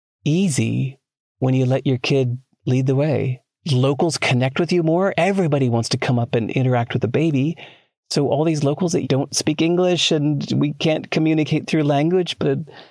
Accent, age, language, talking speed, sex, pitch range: American, 40-59, English, 180 wpm, male, 120-155 Hz